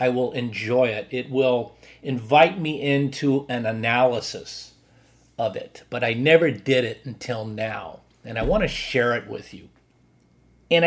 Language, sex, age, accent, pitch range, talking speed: English, male, 40-59, American, 120-155 Hz, 160 wpm